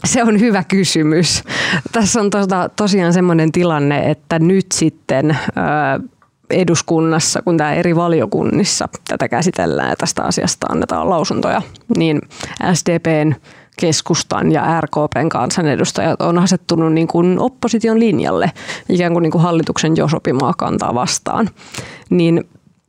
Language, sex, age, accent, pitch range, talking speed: Finnish, female, 20-39, native, 165-200 Hz, 115 wpm